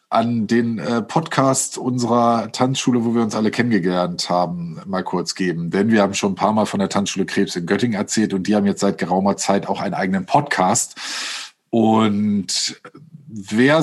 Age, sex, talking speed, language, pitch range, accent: 50-69, male, 180 wpm, German, 105-145 Hz, German